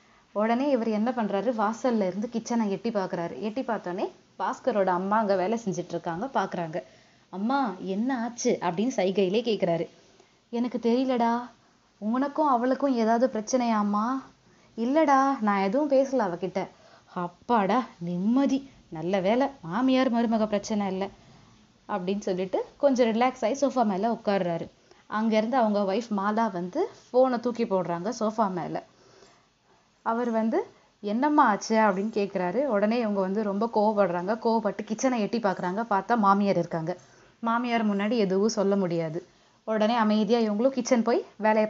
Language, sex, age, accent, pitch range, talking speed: Tamil, female, 20-39, native, 190-240 Hz, 130 wpm